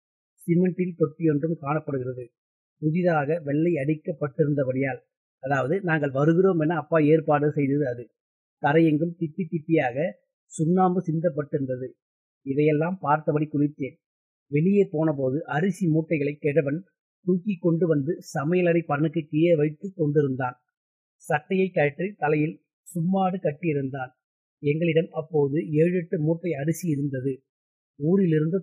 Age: 30-49